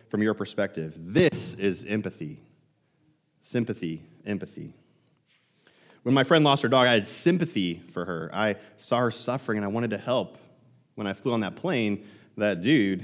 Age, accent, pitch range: 30-49, American, 95-120 Hz